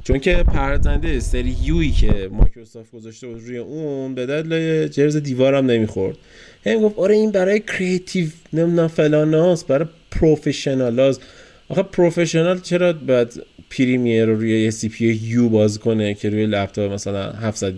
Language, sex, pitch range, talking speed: Persian, male, 110-150 Hz, 150 wpm